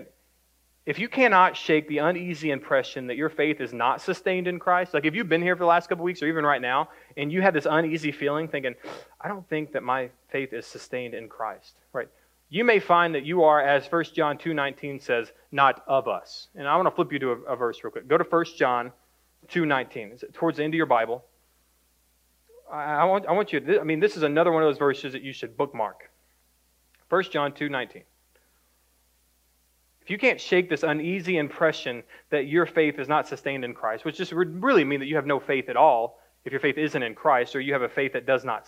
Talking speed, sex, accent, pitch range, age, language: 230 wpm, male, American, 135-185 Hz, 30-49, English